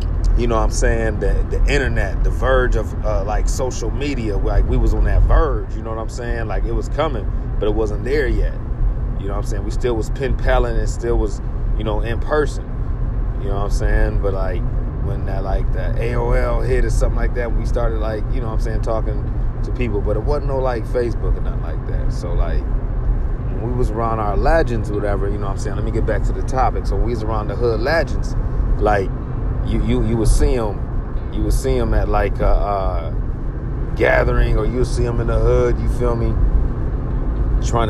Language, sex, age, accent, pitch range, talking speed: English, male, 30-49, American, 105-125 Hz, 230 wpm